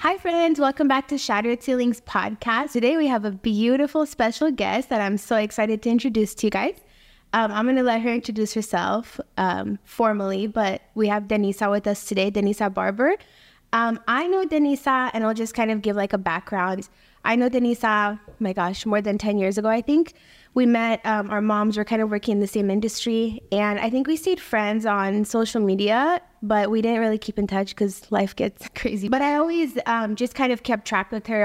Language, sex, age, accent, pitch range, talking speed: English, female, 10-29, American, 205-250 Hz, 210 wpm